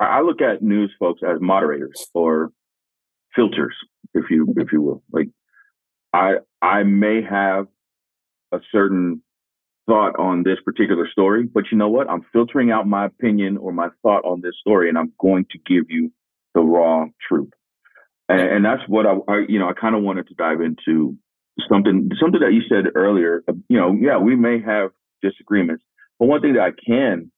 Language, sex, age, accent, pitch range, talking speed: English, male, 50-69, American, 85-110 Hz, 185 wpm